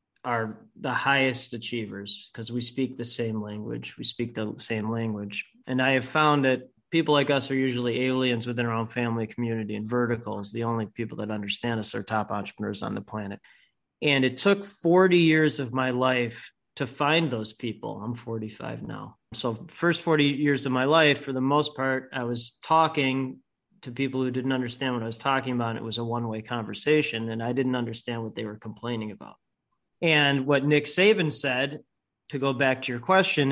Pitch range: 120-140 Hz